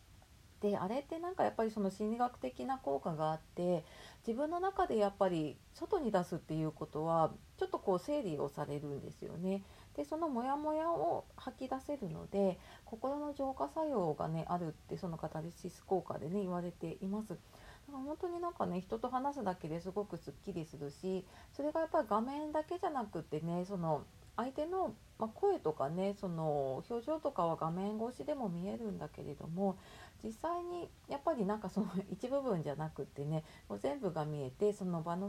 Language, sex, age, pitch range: Japanese, female, 30-49, 155-230 Hz